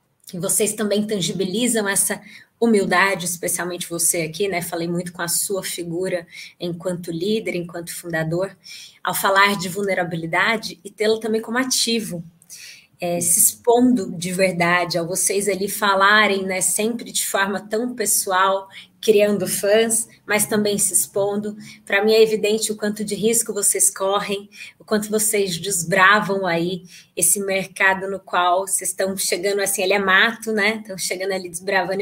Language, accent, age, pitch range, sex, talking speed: Portuguese, Brazilian, 20-39, 180-210 Hz, female, 150 wpm